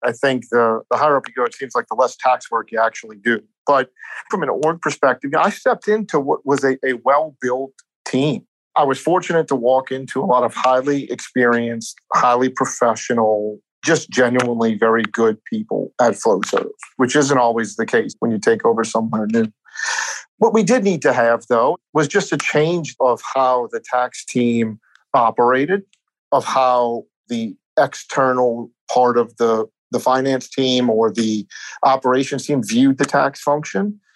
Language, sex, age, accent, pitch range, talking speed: English, male, 50-69, American, 115-145 Hz, 175 wpm